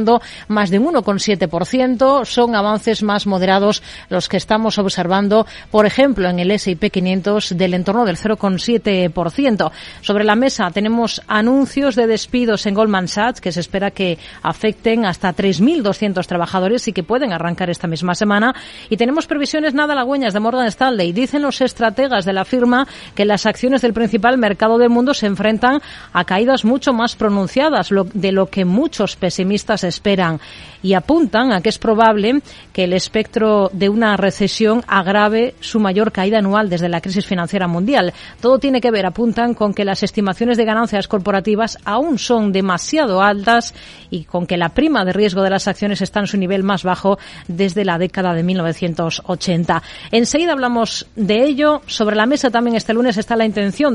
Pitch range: 190-235 Hz